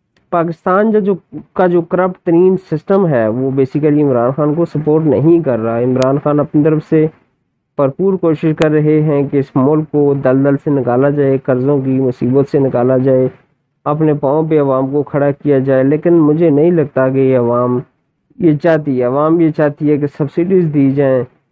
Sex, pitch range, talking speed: male, 135-160 Hz, 190 wpm